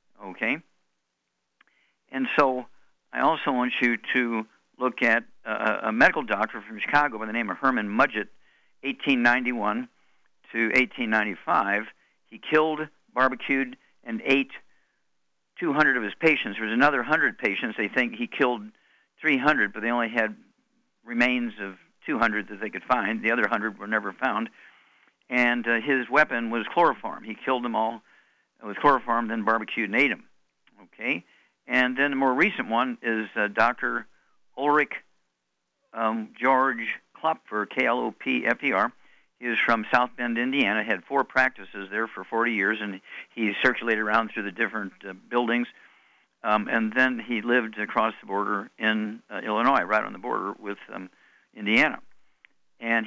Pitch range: 105-125 Hz